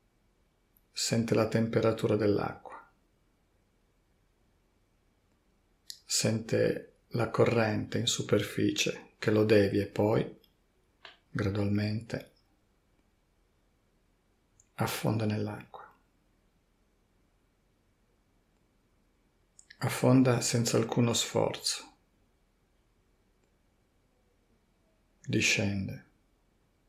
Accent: native